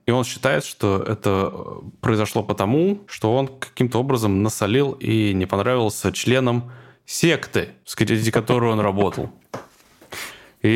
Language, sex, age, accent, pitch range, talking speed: Russian, male, 20-39, native, 100-130 Hz, 125 wpm